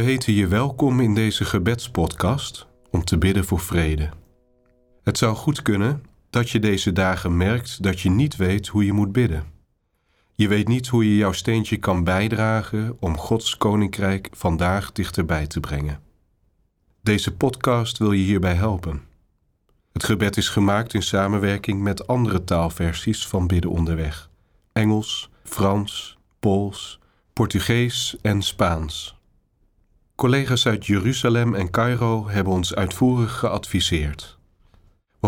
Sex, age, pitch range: male, 40-59, 90-110 Hz